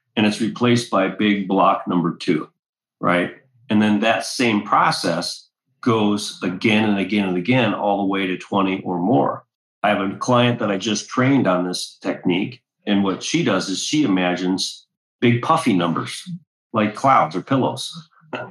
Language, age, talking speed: English, 40-59, 170 wpm